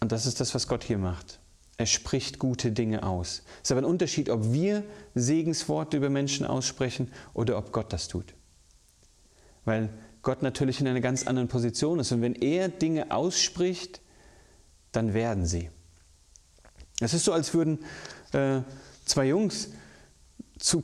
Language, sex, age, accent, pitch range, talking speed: German, male, 40-59, German, 105-150 Hz, 160 wpm